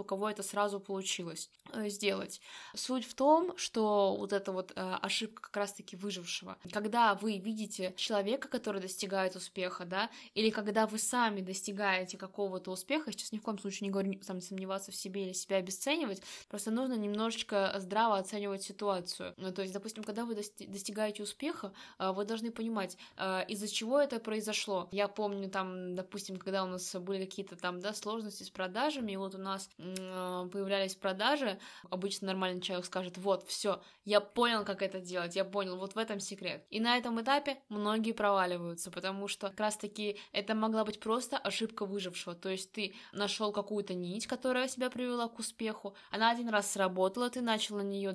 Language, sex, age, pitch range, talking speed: Russian, female, 20-39, 190-220 Hz, 175 wpm